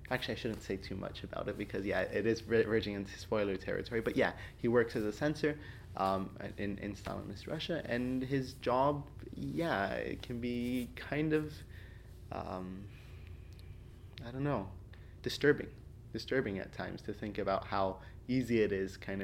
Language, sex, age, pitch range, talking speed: English, male, 20-39, 95-115 Hz, 170 wpm